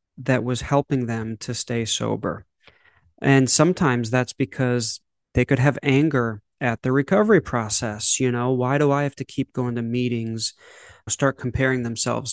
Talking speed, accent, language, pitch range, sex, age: 160 wpm, American, English, 120-140 Hz, male, 30-49